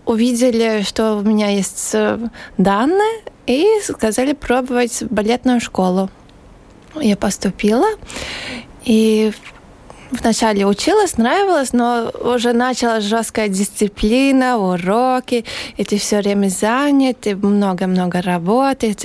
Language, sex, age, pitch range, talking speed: Russian, female, 20-39, 215-255 Hz, 100 wpm